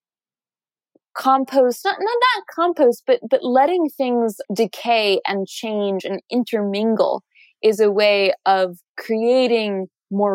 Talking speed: 115 wpm